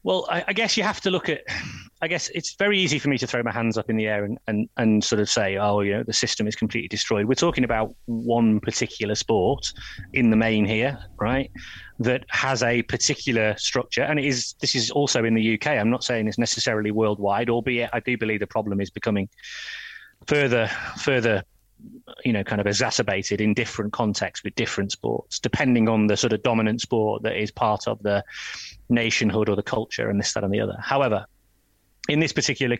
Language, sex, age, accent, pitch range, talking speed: English, male, 30-49, British, 105-130 Hz, 210 wpm